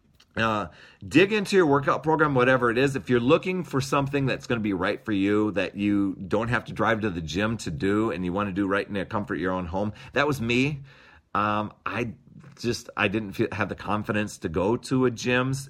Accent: American